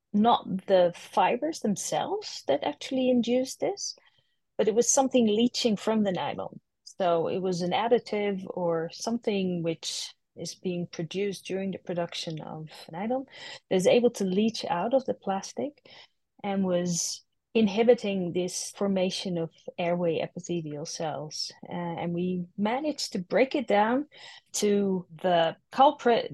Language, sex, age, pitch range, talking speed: English, female, 30-49, 175-215 Hz, 140 wpm